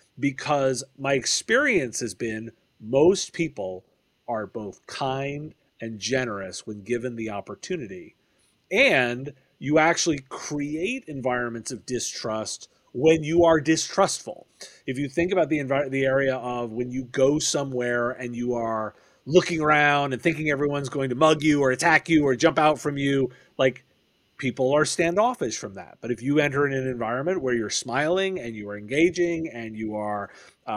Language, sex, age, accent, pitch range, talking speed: English, male, 40-59, American, 120-155 Hz, 165 wpm